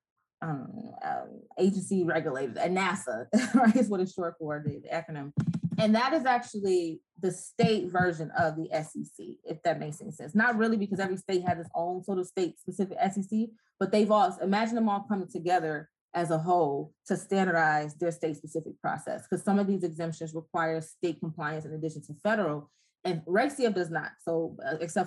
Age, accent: 20-39, American